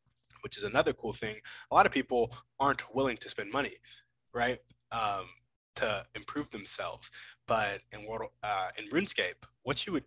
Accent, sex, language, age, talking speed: American, male, English, 20-39, 155 wpm